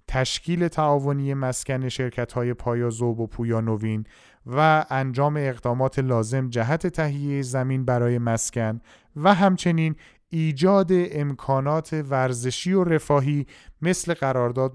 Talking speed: 110 wpm